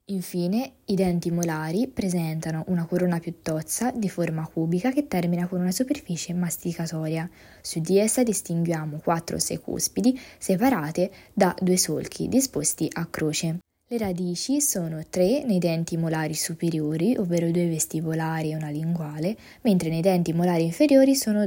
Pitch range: 165-210 Hz